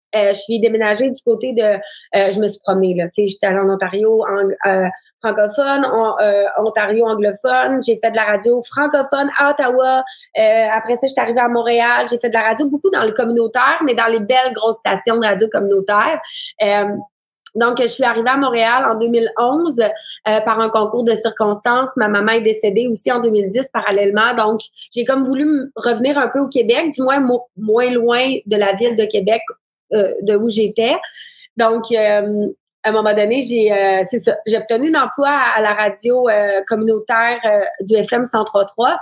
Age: 20-39